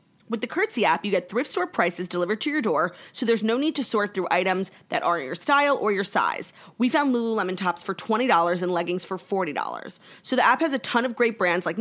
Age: 30-49